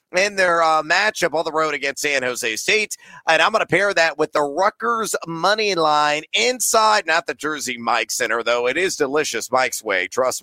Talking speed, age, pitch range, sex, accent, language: 195 wpm, 30-49, 145-195 Hz, male, American, English